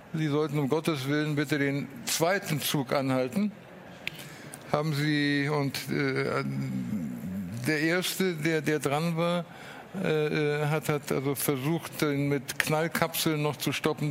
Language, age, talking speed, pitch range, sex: German, 60-79, 130 wpm, 135-160 Hz, male